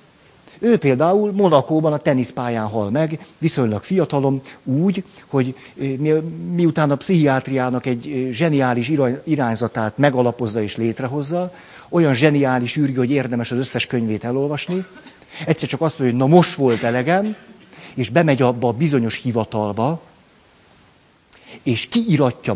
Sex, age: male, 50-69